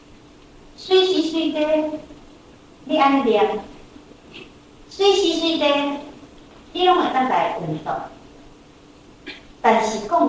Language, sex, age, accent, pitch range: Chinese, male, 50-69, American, 200-325 Hz